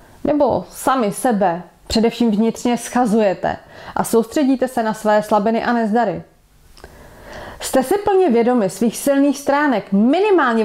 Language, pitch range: Czech, 210-270 Hz